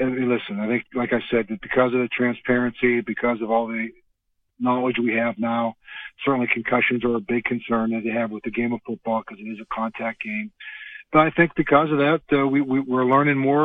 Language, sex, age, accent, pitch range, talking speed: English, male, 40-59, American, 115-130 Hz, 235 wpm